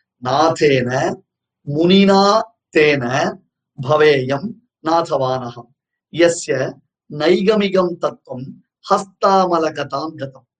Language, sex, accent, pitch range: Tamil, male, native, 140-185 Hz